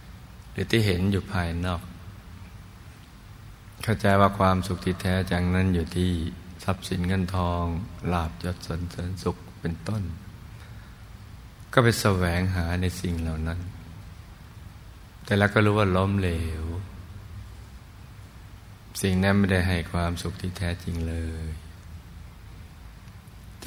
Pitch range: 85-100 Hz